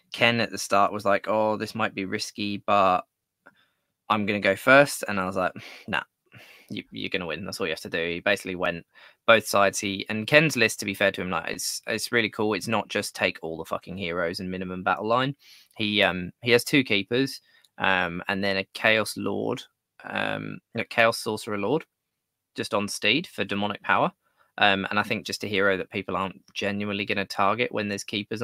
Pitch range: 95-110 Hz